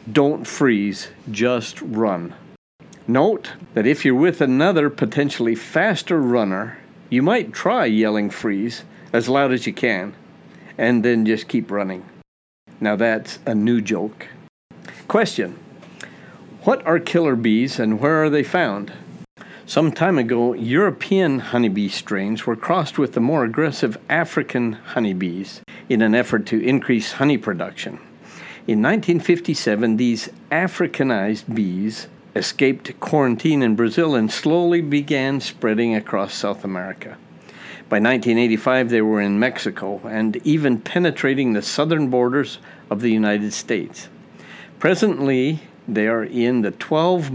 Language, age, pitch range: English, 50-69, 110-145 Hz